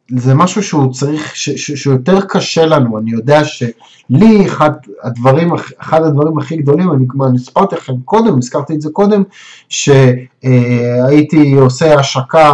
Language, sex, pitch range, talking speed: Hebrew, male, 130-165 Hz, 140 wpm